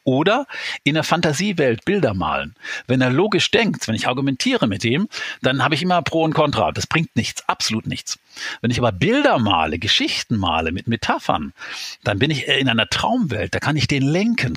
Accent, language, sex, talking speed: German, German, male, 195 wpm